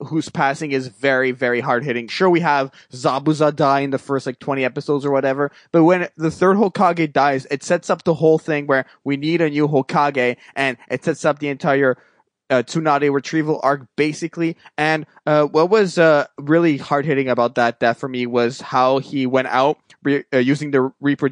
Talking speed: 195 wpm